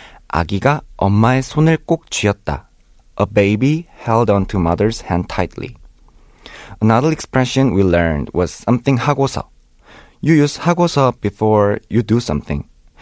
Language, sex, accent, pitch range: Korean, male, native, 105-150 Hz